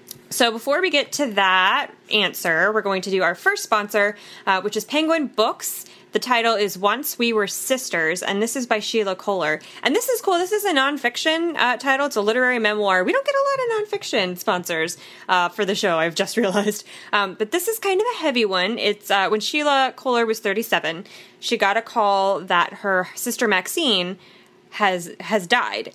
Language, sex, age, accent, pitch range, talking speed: English, female, 20-39, American, 185-230 Hz, 205 wpm